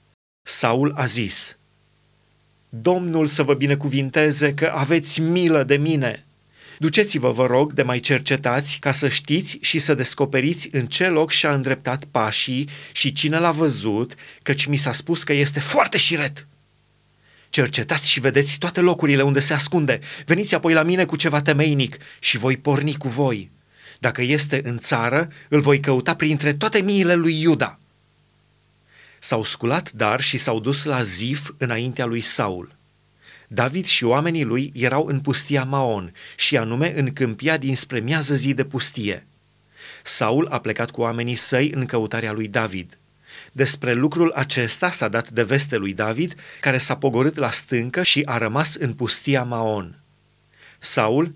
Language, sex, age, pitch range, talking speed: Romanian, male, 30-49, 125-150 Hz, 155 wpm